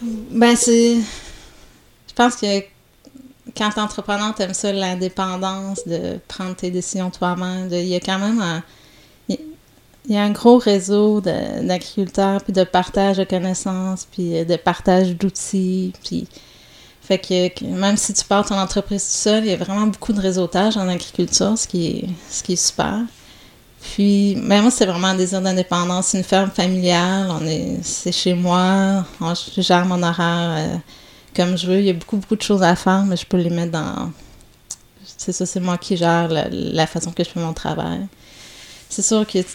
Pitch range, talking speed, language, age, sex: 175-200 Hz, 180 wpm, French, 30-49, female